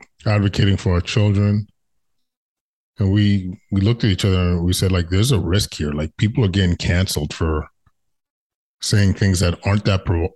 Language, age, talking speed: English, 20-39, 180 wpm